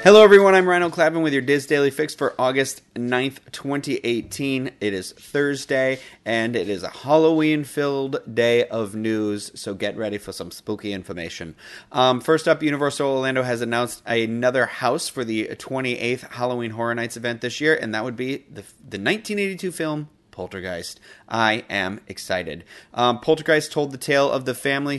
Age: 30-49